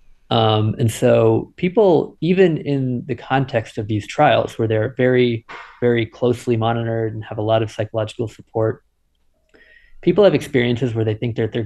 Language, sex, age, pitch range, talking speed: English, male, 20-39, 110-125 Hz, 165 wpm